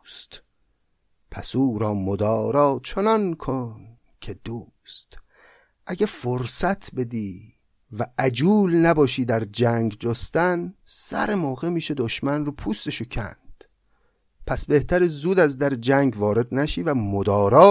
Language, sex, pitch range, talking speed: Persian, male, 110-160 Hz, 120 wpm